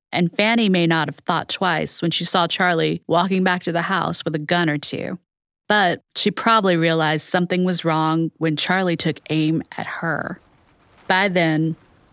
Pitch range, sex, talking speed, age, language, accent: 155-185 Hz, female, 180 wpm, 30-49, English, American